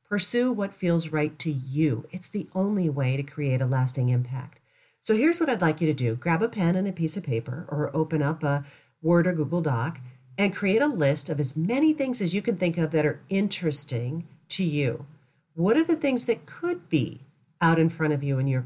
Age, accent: 40-59, American